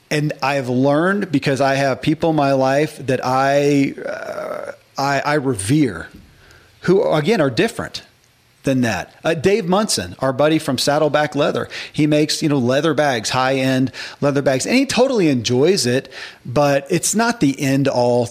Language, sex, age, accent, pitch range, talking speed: English, male, 40-59, American, 125-150 Hz, 170 wpm